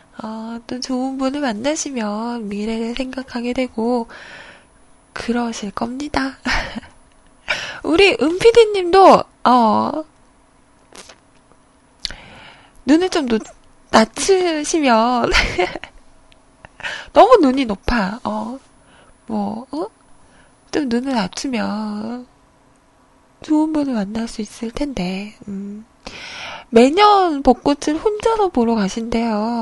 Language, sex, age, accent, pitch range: Korean, female, 20-39, native, 215-300 Hz